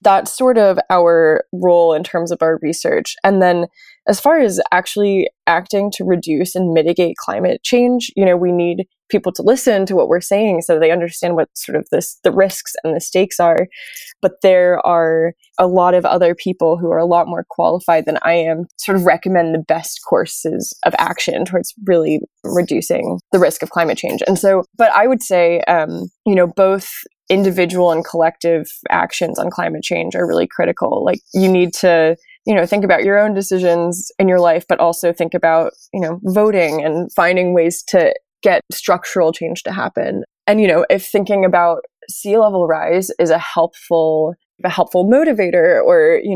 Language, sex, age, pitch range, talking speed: English, female, 20-39, 170-200 Hz, 190 wpm